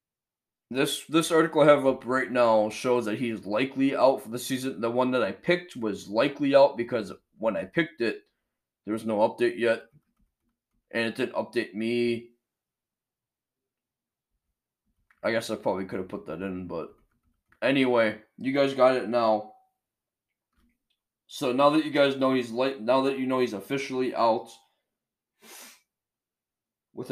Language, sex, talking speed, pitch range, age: English, male, 160 wpm, 115-135 Hz, 20-39